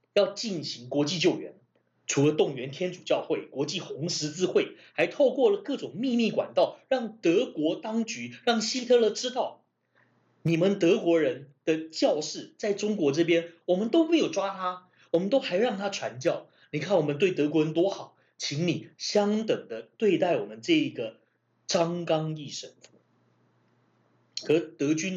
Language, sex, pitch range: Chinese, male, 150-215 Hz